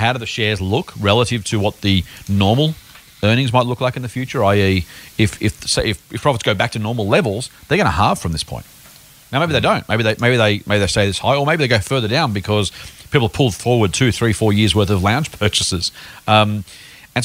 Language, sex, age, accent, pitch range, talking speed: English, male, 40-59, Australian, 100-125 Hz, 245 wpm